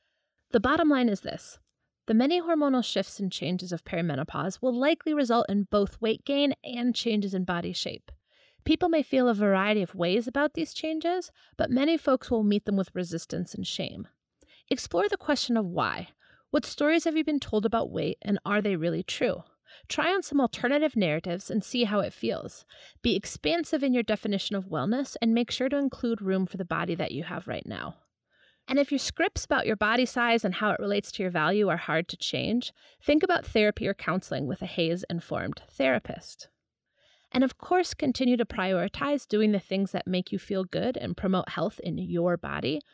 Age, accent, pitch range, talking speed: 30-49, American, 190-270 Hz, 200 wpm